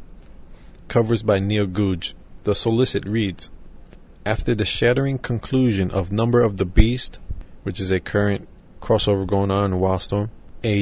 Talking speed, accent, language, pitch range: 145 wpm, American, English, 95-110 Hz